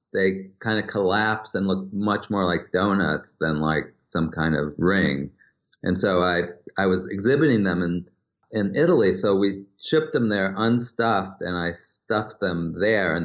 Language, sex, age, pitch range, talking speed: English, male, 40-59, 90-115 Hz, 170 wpm